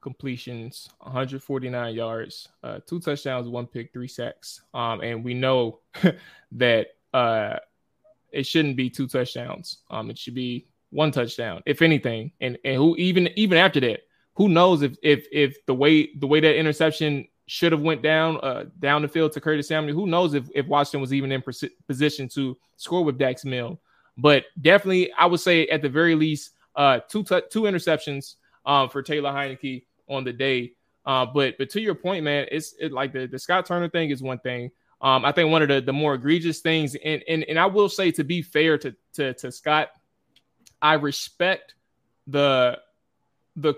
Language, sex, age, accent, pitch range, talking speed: English, male, 20-39, American, 130-160 Hz, 190 wpm